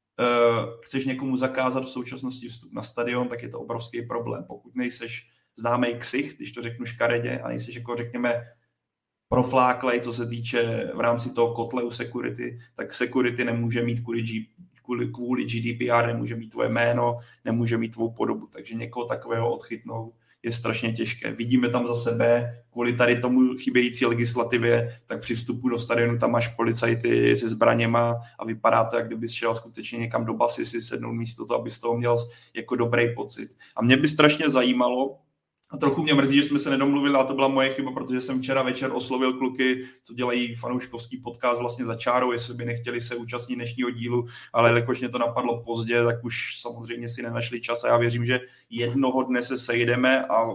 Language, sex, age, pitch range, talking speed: Czech, male, 30-49, 115-125 Hz, 185 wpm